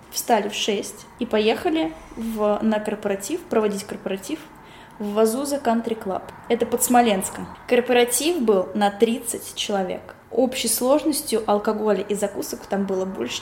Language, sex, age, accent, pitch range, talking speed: Russian, female, 10-29, native, 200-235 Hz, 135 wpm